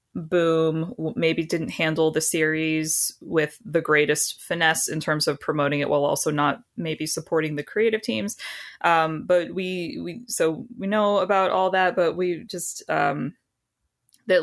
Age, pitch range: 20-39, 155-185 Hz